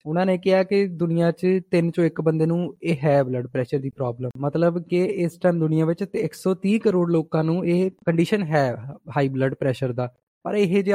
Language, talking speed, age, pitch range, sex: Punjabi, 210 wpm, 20-39, 150-190 Hz, male